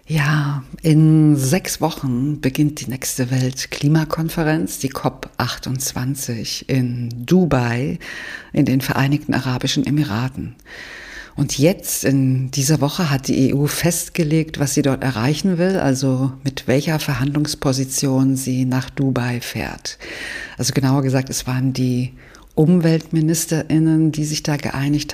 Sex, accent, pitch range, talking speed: female, German, 135-160 Hz, 120 wpm